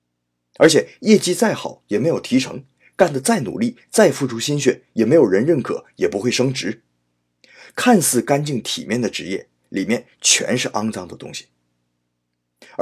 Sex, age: male, 30-49